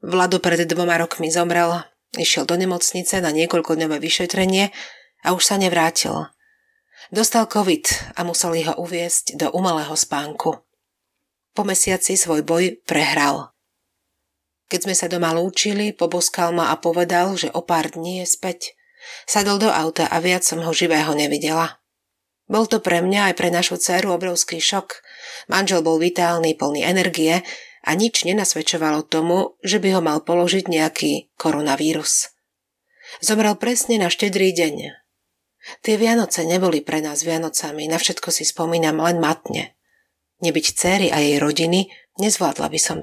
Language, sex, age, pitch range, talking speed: Slovak, female, 40-59, 160-190 Hz, 145 wpm